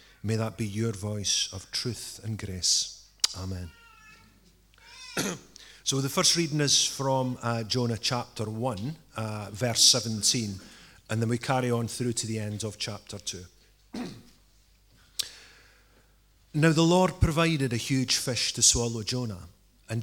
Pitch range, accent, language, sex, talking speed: 105-135 Hz, British, English, male, 135 wpm